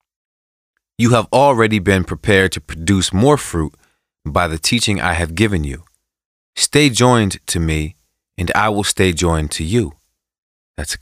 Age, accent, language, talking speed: 30-49, American, English, 160 wpm